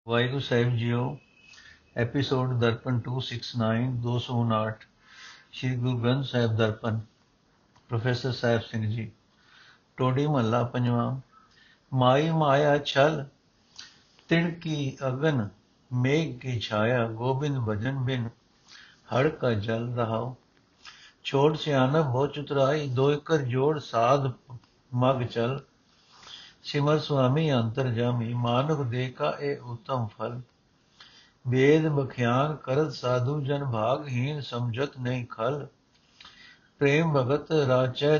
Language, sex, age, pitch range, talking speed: Punjabi, male, 60-79, 120-145 Hz, 100 wpm